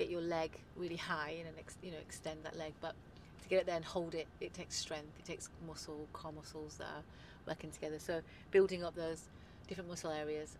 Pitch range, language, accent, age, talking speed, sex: 155-180 Hz, English, British, 30-49, 215 wpm, female